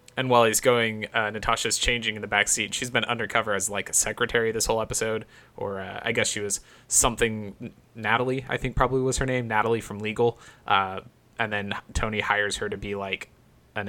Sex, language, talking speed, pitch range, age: male, English, 205 wpm, 105-125 Hz, 20-39